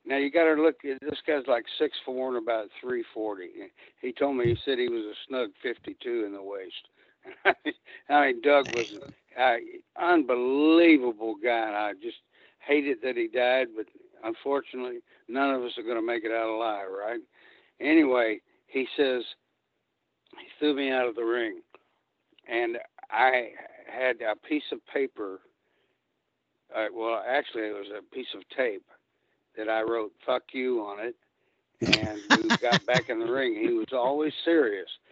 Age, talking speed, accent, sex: 60-79, 165 wpm, American, male